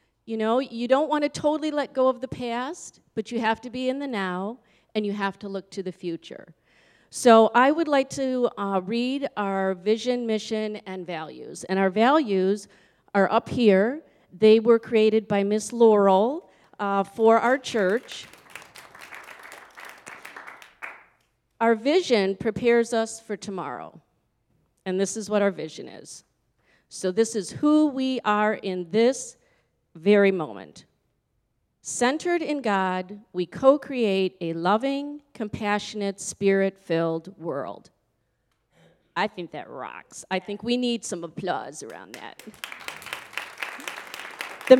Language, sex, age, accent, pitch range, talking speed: English, female, 40-59, American, 195-250 Hz, 135 wpm